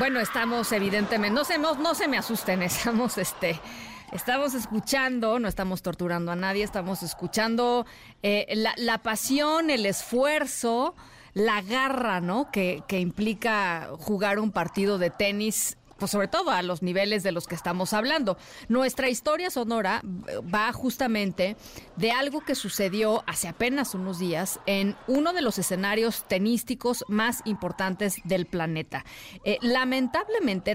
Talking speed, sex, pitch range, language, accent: 140 wpm, female, 180-230 Hz, Spanish, Mexican